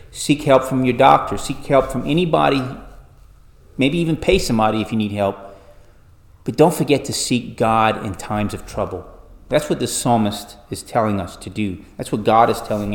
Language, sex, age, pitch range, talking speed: English, male, 30-49, 95-120 Hz, 190 wpm